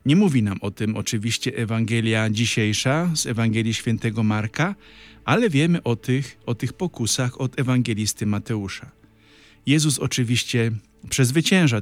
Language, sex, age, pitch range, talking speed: Polish, male, 50-69, 105-150 Hz, 125 wpm